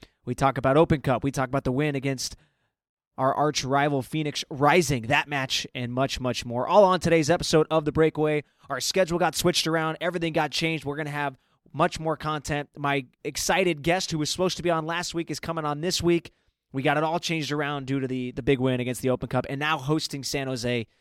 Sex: male